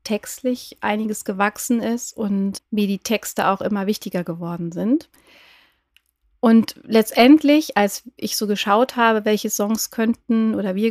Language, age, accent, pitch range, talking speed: German, 30-49, German, 200-230 Hz, 140 wpm